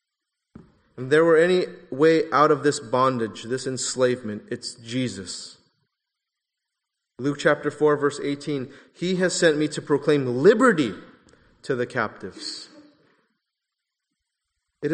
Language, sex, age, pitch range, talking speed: English, male, 30-49, 140-180 Hz, 115 wpm